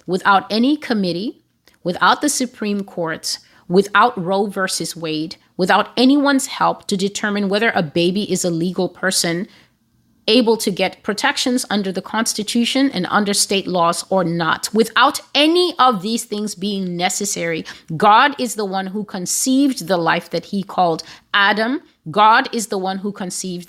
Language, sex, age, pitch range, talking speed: English, female, 30-49, 180-230 Hz, 155 wpm